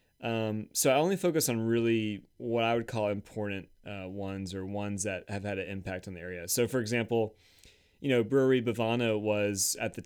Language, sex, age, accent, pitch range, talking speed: English, male, 30-49, American, 100-125 Hz, 205 wpm